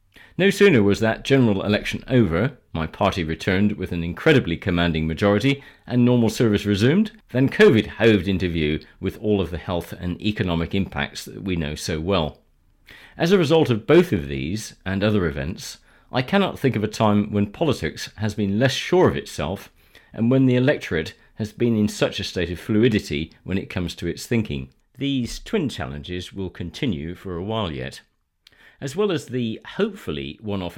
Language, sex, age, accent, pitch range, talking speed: English, male, 40-59, British, 85-120 Hz, 185 wpm